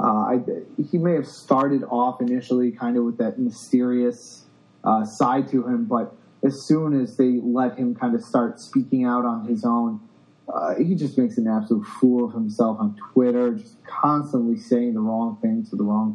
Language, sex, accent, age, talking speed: English, male, American, 30-49, 195 wpm